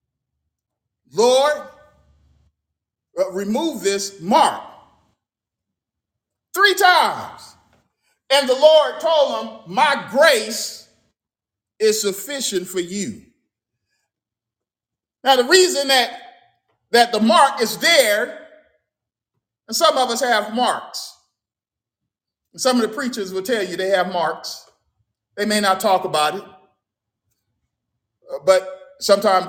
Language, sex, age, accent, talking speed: English, male, 50-69, American, 105 wpm